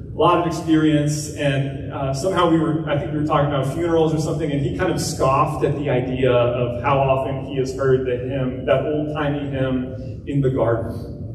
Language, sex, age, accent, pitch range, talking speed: English, male, 30-49, American, 120-150 Hz, 200 wpm